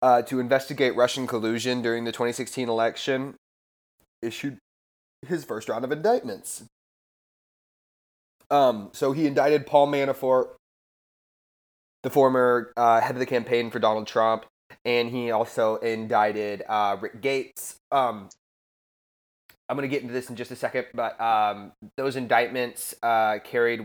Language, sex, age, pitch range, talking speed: English, male, 20-39, 110-130 Hz, 140 wpm